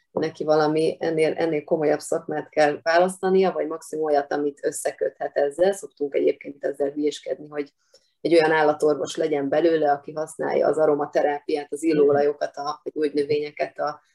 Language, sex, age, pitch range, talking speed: Hungarian, female, 30-49, 150-185 Hz, 140 wpm